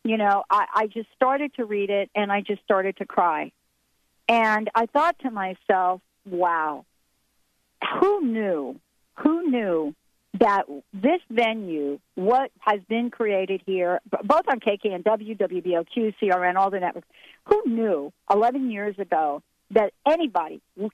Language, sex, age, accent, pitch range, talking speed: English, female, 50-69, American, 180-255 Hz, 145 wpm